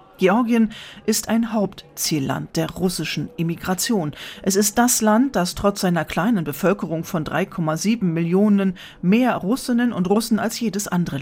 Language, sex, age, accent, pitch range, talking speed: German, female, 40-59, German, 175-225 Hz, 140 wpm